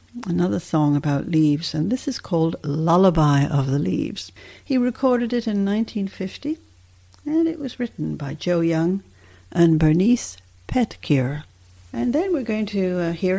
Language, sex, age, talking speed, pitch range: English, female, 60-79, 150 wpm, 155-230 Hz